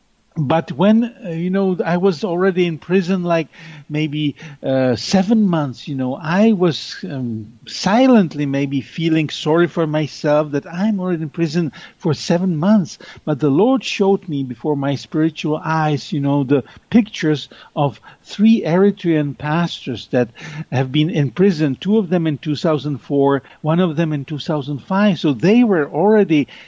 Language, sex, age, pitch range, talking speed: English, male, 60-79, 145-190 Hz, 155 wpm